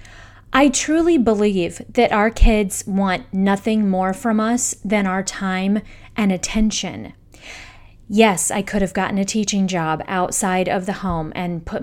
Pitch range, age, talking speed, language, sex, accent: 195-245 Hz, 30-49, 150 wpm, English, female, American